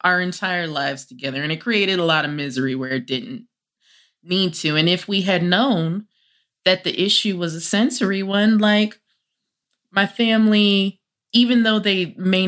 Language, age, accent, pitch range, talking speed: English, 20-39, American, 150-190 Hz, 170 wpm